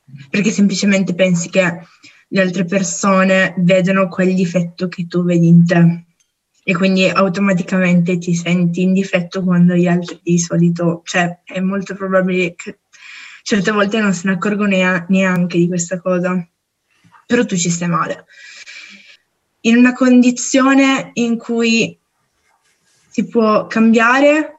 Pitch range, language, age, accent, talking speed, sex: 180-205 Hz, Italian, 20-39, native, 135 wpm, female